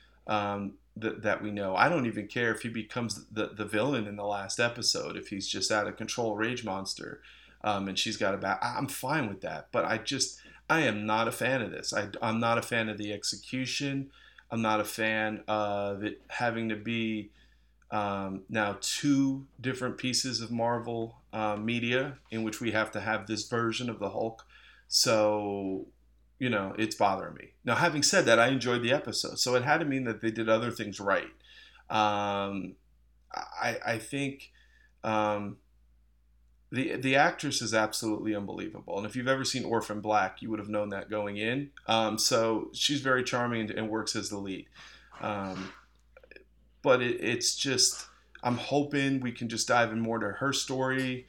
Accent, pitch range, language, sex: American, 105-120 Hz, English, male